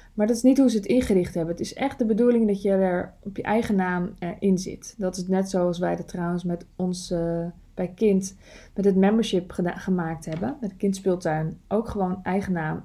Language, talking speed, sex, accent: Dutch, 225 wpm, female, Dutch